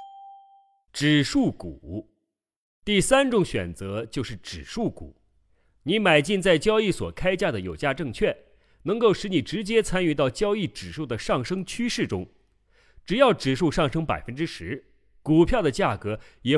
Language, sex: Chinese, male